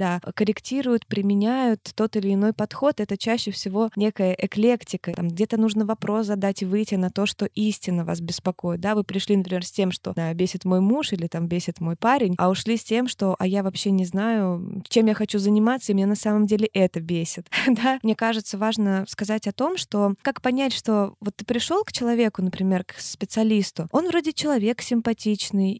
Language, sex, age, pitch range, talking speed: Russian, female, 20-39, 185-225 Hz, 200 wpm